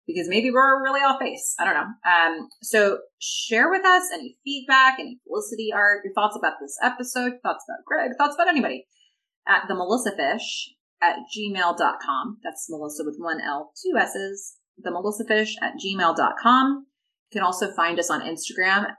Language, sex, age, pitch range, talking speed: English, female, 30-49, 175-260 Hz, 160 wpm